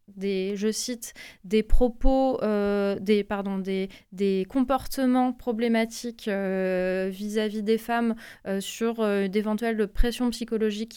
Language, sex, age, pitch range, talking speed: French, female, 20-39, 205-245 Hz, 120 wpm